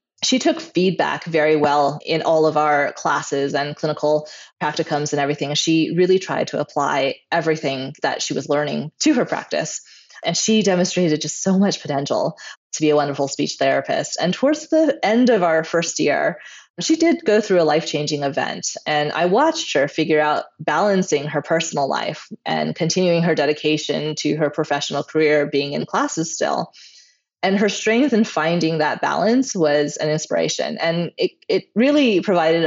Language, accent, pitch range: English, American, 150-205 Hz